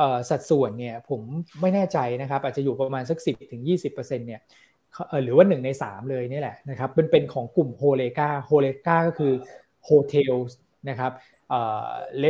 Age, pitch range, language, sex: 20-39, 130-155 Hz, Thai, male